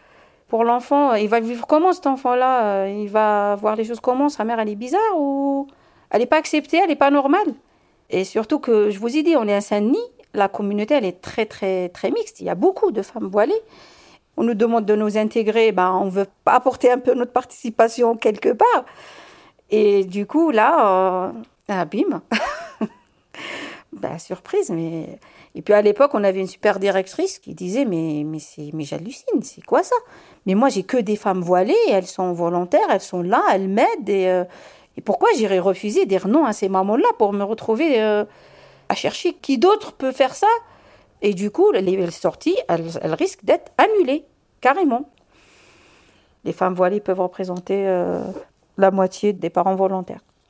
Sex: female